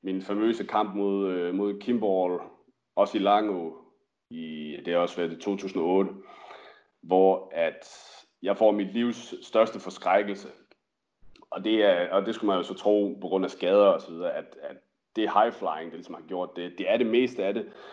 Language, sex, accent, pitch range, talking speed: Danish, male, native, 95-120 Hz, 180 wpm